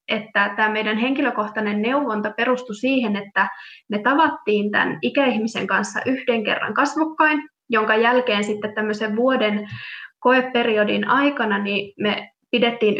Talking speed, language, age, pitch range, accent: 120 wpm, Finnish, 20-39, 210-255 Hz, native